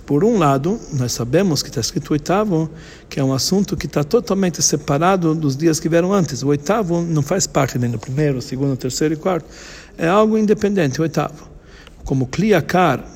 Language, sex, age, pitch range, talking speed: Portuguese, male, 60-79, 130-175 Hz, 190 wpm